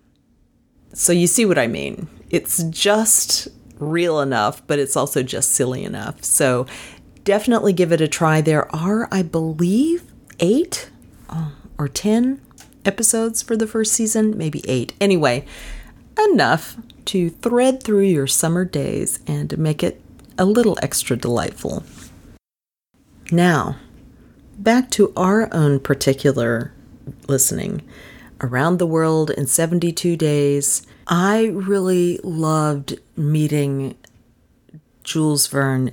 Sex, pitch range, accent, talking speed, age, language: female, 135-185 Hz, American, 115 wpm, 40-59, English